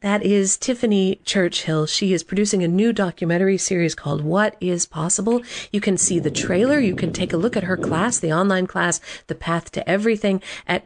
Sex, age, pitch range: female, 40-59, 165-215 Hz